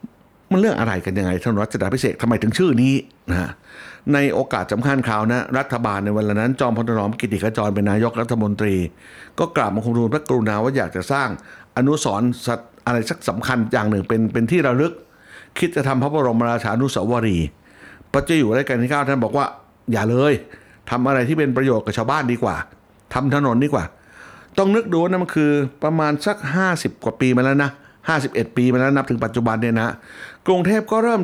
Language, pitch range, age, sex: Thai, 115-150 Hz, 60-79, male